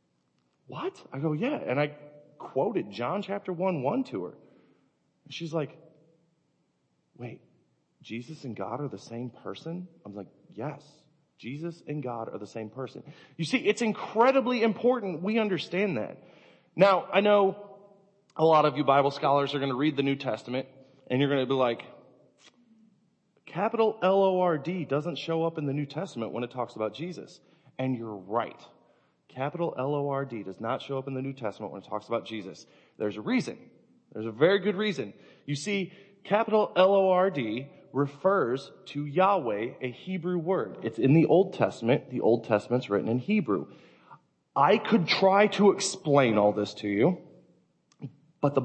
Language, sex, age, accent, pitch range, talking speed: English, male, 30-49, American, 125-190 Hz, 170 wpm